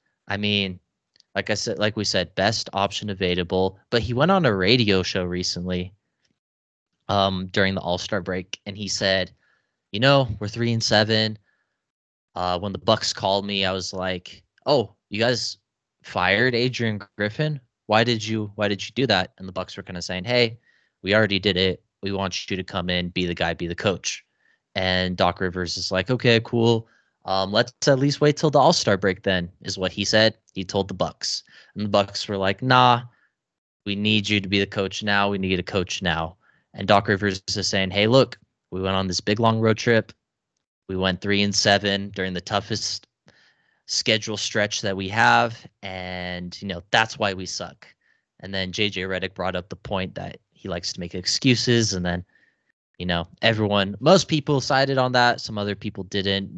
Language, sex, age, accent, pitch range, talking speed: English, male, 20-39, American, 95-110 Hz, 200 wpm